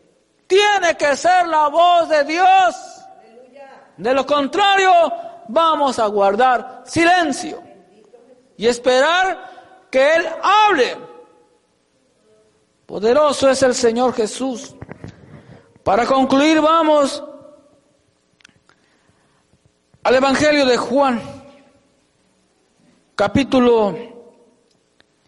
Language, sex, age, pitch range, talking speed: English, male, 50-69, 210-295 Hz, 75 wpm